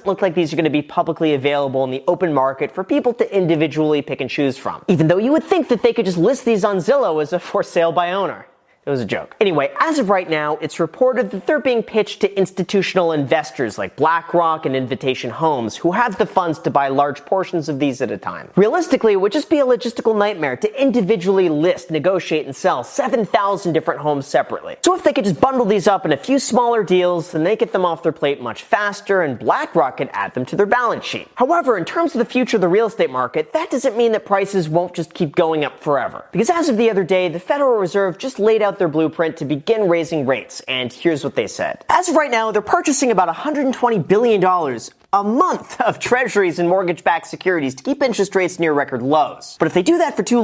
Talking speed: 235 wpm